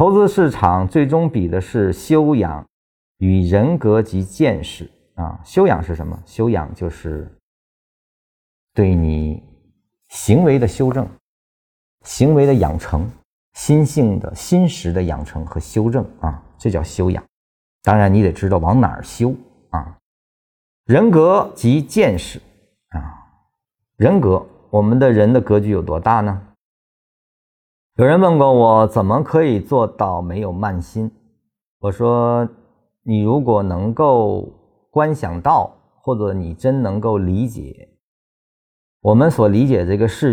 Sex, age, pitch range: male, 50-69, 85-120 Hz